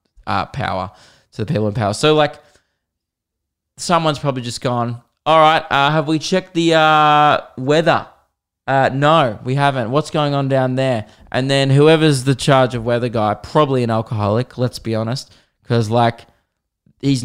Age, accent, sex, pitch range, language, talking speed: 20-39, Australian, male, 115-155 Hz, English, 165 wpm